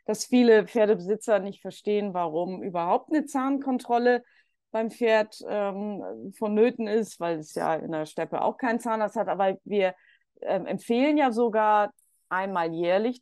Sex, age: female, 30-49